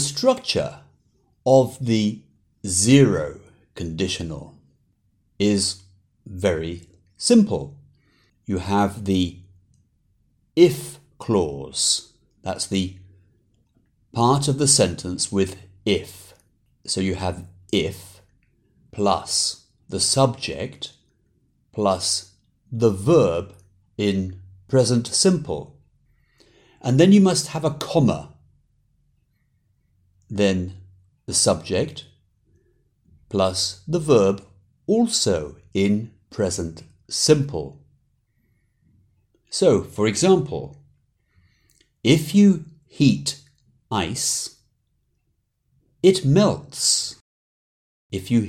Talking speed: 75 wpm